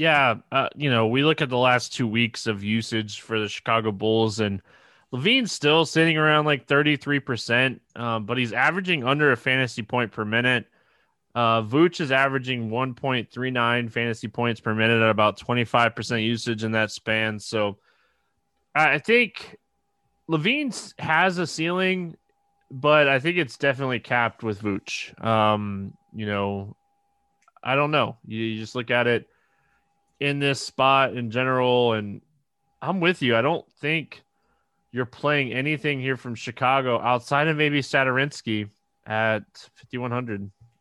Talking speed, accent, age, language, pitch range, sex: 150 wpm, American, 20-39, English, 115-150 Hz, male